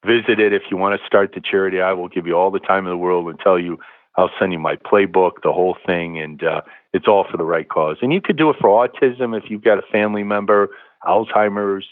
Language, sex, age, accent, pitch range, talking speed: English, male, 50-69, American, 90-110 Hz, 260 wpm